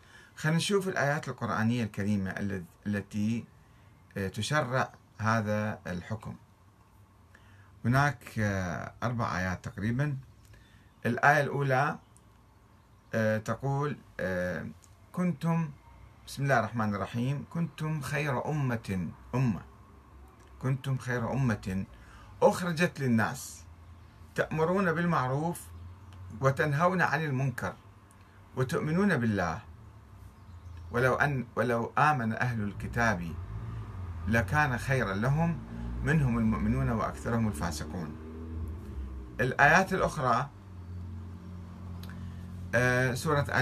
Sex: male